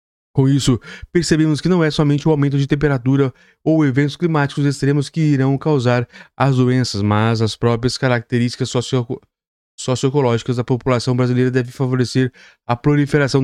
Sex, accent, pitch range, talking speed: male, Brazilian, 115-140 Hz, 145 wpm